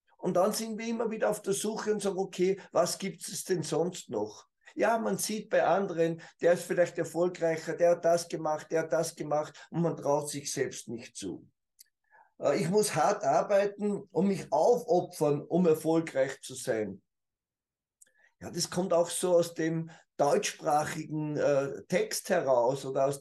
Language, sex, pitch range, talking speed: German, male, 145-190 Hz, 170 wpm